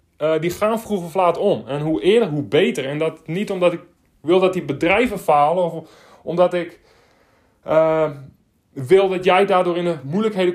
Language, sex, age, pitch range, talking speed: Dutch, male, 30-49, 155-195 Hz, 190 wpm